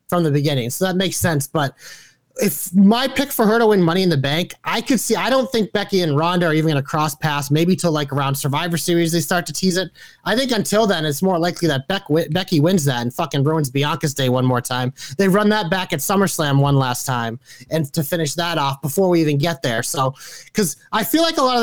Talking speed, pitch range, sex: 260 wpm, 145-200 Hz, male